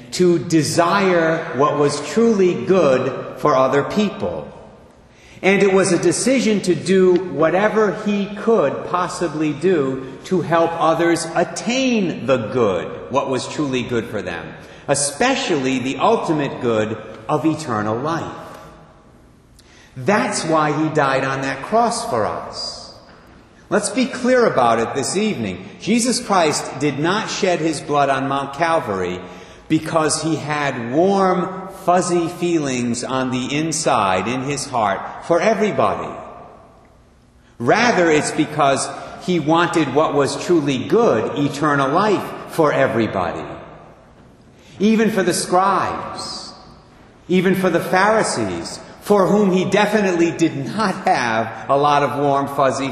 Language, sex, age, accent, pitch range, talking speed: English, male, 50-69, American, 140-190 Hz, 130 wpm